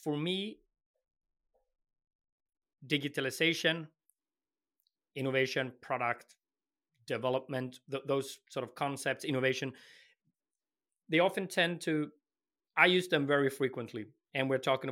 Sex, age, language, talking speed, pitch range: male, 30-49, English, 95 wpm, 130-160 Hz